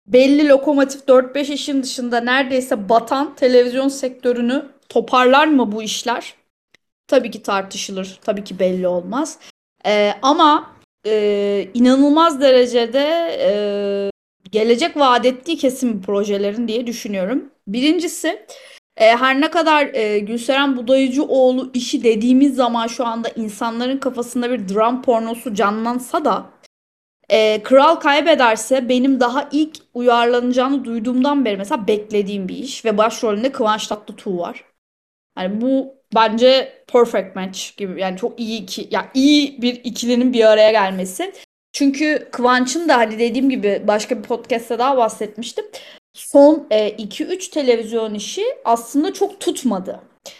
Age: 30-49